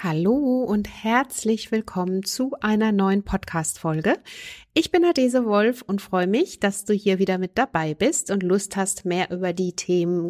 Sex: female